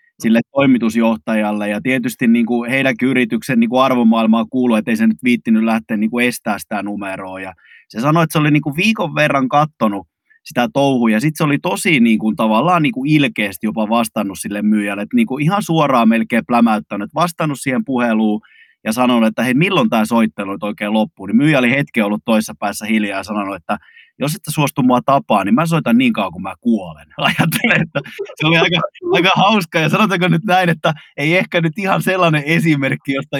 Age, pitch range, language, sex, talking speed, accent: 20-39, 115-165 Hz, Finnish, male, 185 wpm, native